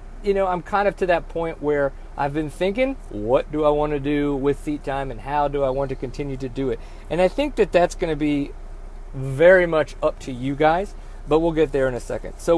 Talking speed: 255 wpm